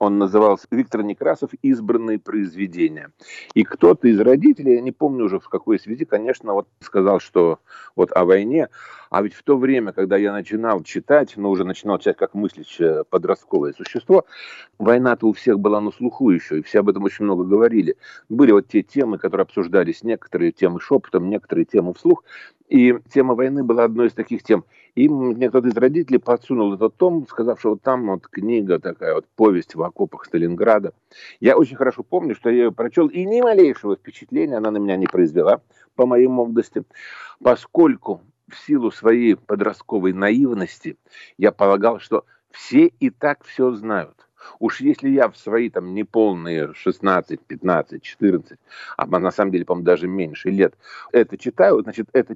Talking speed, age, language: 175 wpm, 40-59, Russian